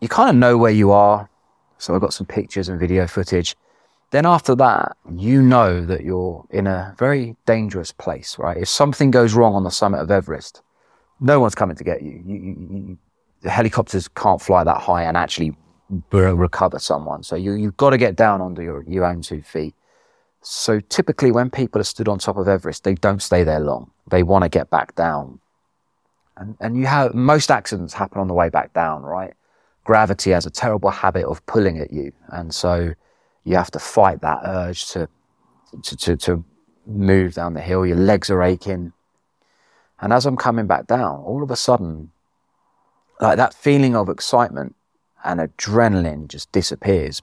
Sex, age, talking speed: male, 30-49, 195 wpm